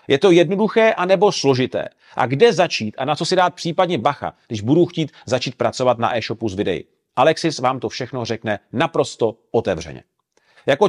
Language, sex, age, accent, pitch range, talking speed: Czech, male, 40-59, native, 140-180 Hz, 175 wpm